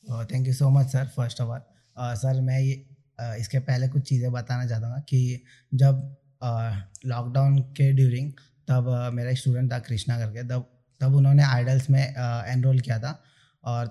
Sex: male